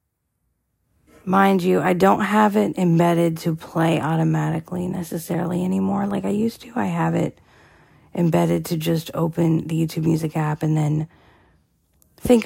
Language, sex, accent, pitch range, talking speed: English, female, American, 145-170 Hz, 145 wpm